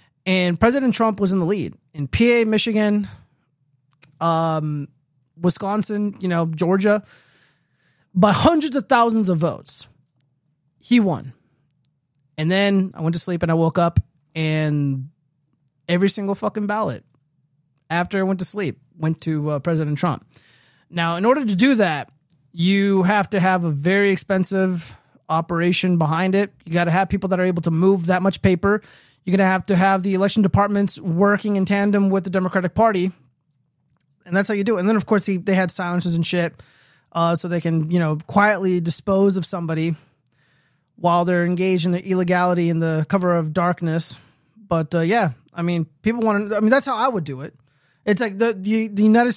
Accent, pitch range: American, 155-200 Hz